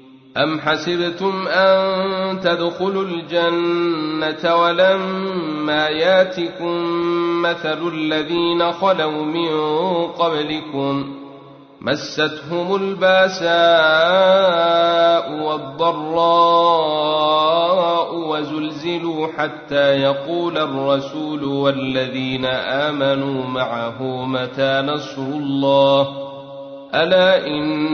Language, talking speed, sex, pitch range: Arabic, 55 wpm, male, 140-170 Hz